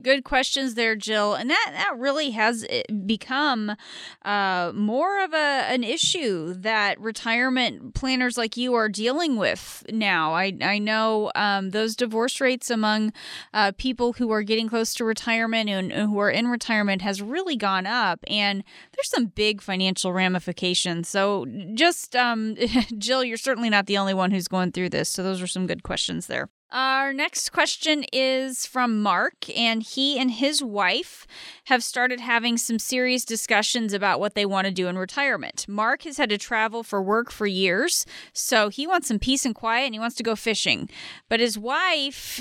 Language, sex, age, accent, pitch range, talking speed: English, female, 30-49, American, 205-260 Hz, 180 wpm